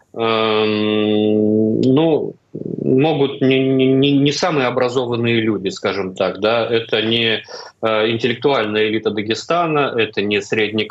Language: Russian